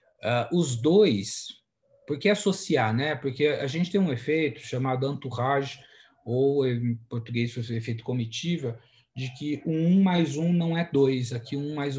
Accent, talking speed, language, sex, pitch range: Brazilian, 160 wpm, Portuguese, male, 120-150 Hz